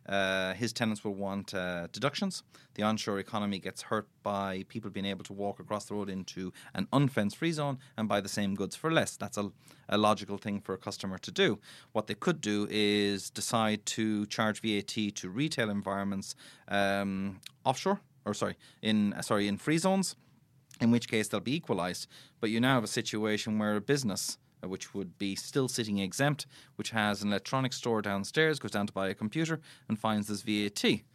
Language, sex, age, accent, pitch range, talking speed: English, male, 30-49, Irish, 100-130 Hz, 195 wpm